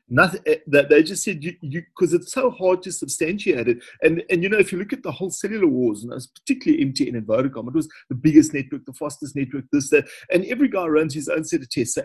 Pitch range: 135-185 Hz